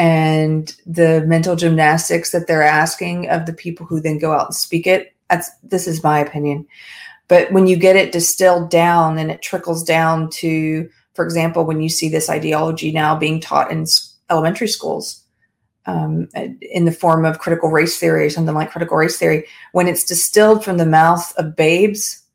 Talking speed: 185 wpm